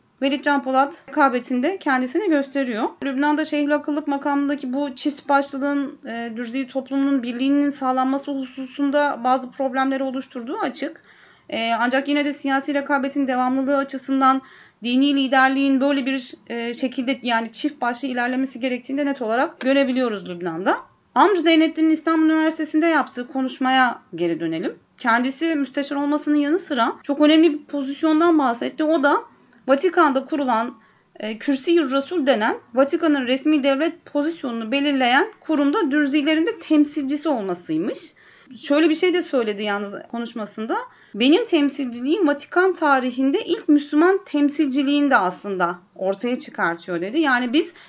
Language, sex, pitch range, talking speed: Turkish, female, 250-300 Hz, 130 wpm